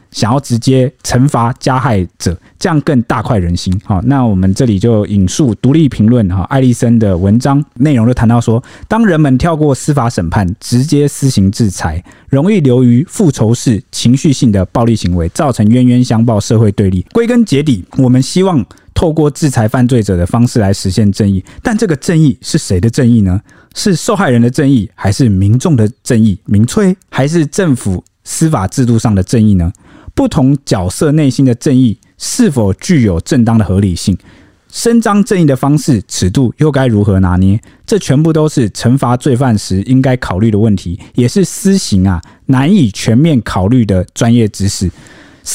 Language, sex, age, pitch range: Chinese, male, 20-39, 100-140 Hz